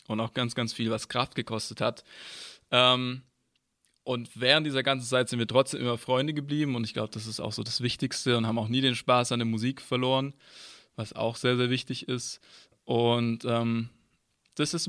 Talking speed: 200 wpm